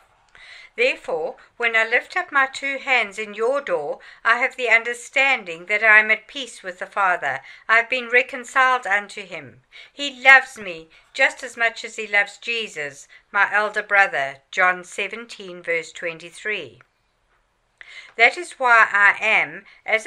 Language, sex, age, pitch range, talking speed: English, female, 60-79, 200-265 Hz, 155 wpm